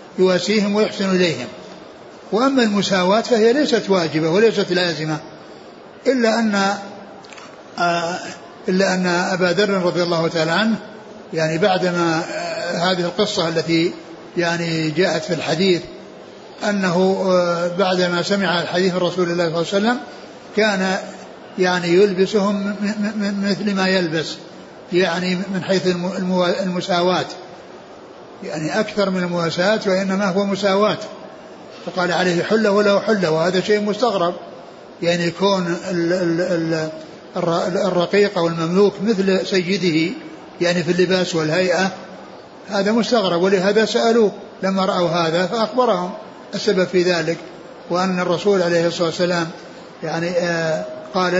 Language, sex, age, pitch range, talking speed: Arabic, male, 60-79, 170-200 Hz, 110 wpm